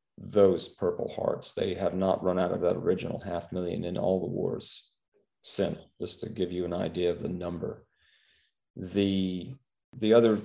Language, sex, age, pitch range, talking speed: English, male, 40-59, 95-115 Hz, 170 wpm